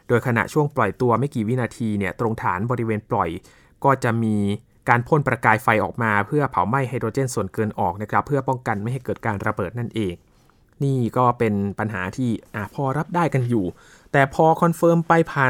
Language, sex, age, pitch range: Thai, male, 20-39, 110-145 Hz